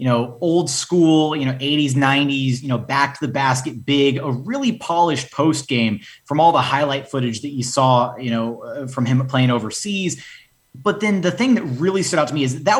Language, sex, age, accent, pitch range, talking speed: English, male, 30-49, American, 130-155 Hz, 215 wpm